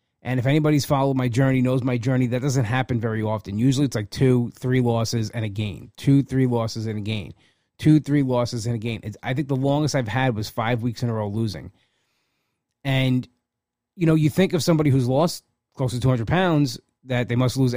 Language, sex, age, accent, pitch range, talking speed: English, male, 30-49, American, 115-140 Hz, 225 wpm